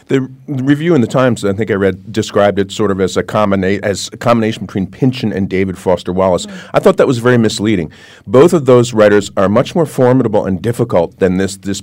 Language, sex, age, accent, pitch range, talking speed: English, male, 40-59, American, 110-145 Hz, 225 wpm